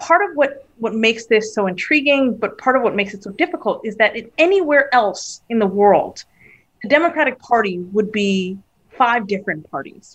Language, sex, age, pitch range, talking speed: English, female, 30-49, 195-255 Hz, 190 wpm